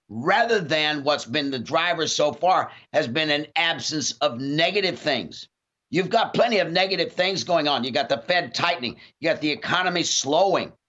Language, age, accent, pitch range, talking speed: English, 50-69, American, 145-185 Hz, 180 wpm